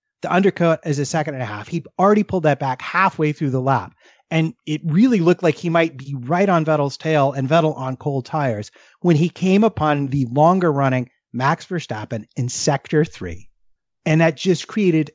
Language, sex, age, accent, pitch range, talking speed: English, male, 30-49, American, 135-170 Hz, 200 wpm